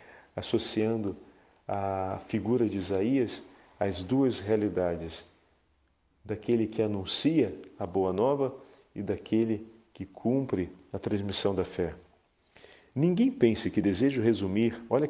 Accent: Brazilian